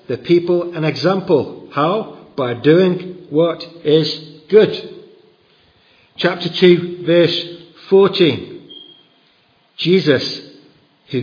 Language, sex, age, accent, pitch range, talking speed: English, male, 50-69, British, 145-190 Hz, 85 wpm